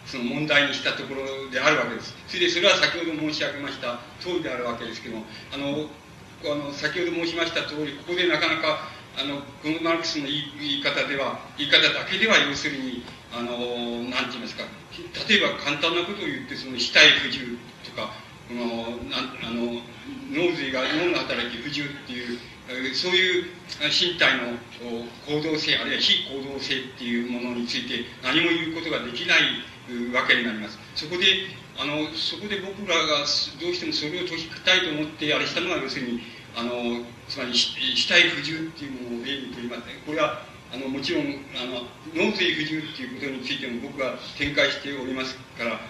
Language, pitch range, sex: Japanese, 120-155 Hz, male